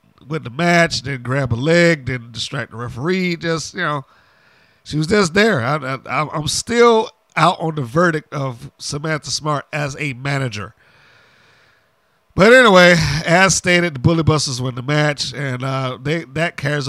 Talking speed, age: 160 wpm, 50-69